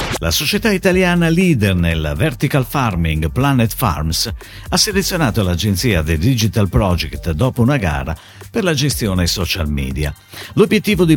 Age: 50-69